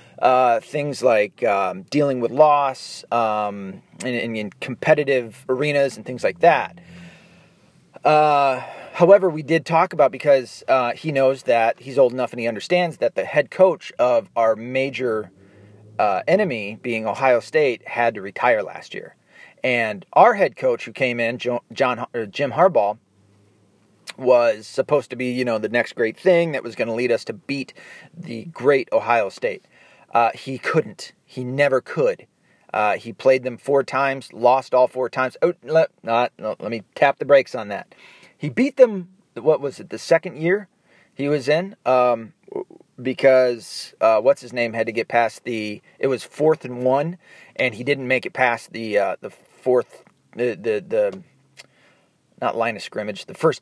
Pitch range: 120-165 Hz